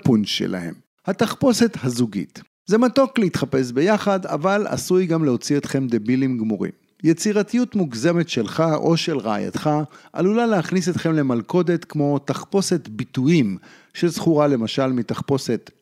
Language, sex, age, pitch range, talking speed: Hebrew, male, 50-69, 125-185 Hz, 120 wpm